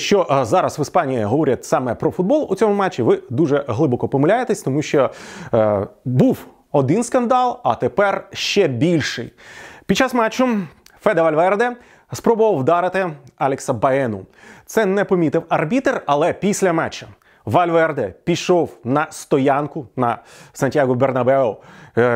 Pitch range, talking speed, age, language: 135-220 Hz, 135 wpm, 30-49, Ukrainian